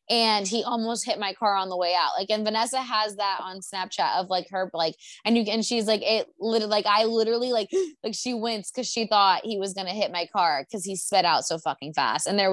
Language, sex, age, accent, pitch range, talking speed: English, female, 20-39, American, 185-215 Hz, 260 wpm